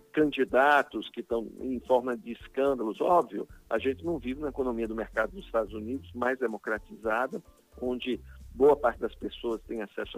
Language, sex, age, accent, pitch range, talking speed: Portuguese, male, 50-69, Brazilian, 115-160 Hz, 165 wpm